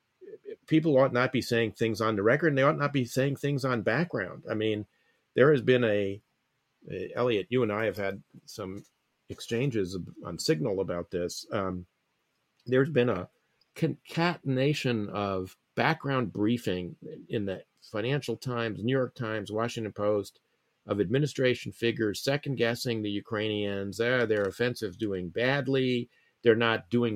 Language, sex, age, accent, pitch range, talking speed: English, male, 40-59, American, 105-130 Hz, 150 wpm